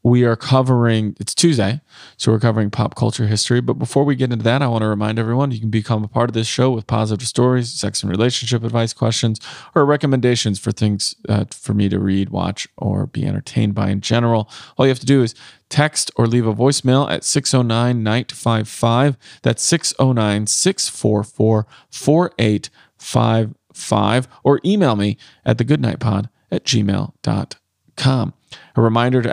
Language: English